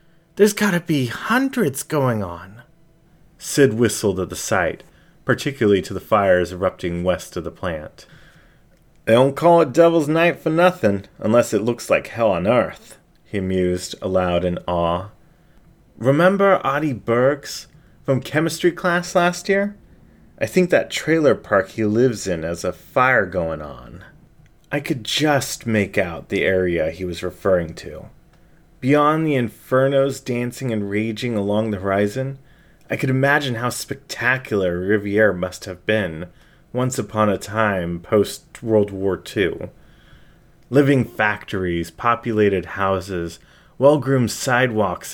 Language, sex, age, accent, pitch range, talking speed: English, male, 30-49, American, 100-145 Hz, 140 wpm